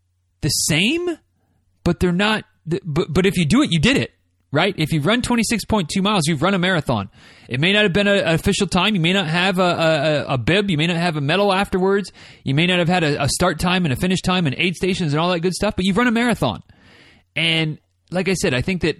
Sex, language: male, English